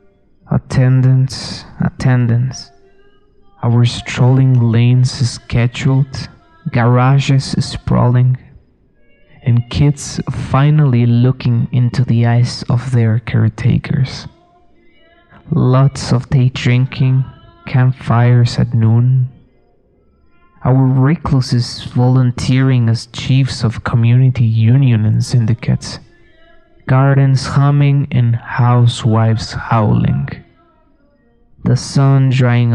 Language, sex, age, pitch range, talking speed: English, male, 20-39, 115-135 Hz, 80 wpm